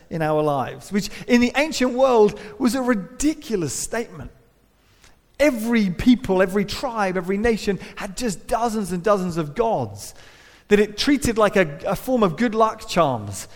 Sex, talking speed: male, 160 wpm